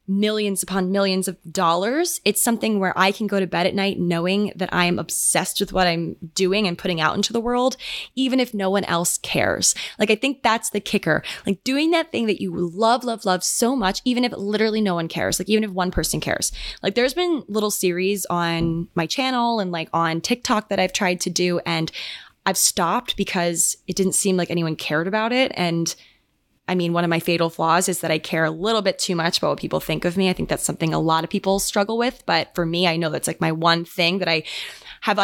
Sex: female